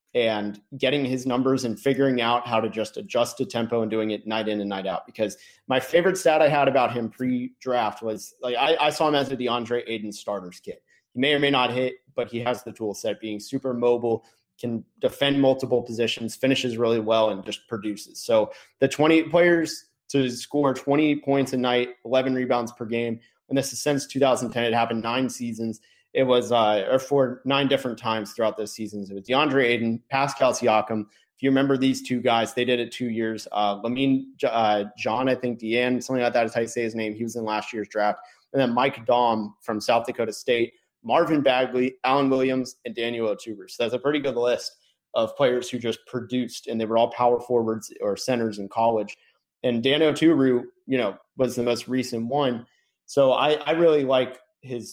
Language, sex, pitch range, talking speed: English, male, 110-130 Hz, 210 wpm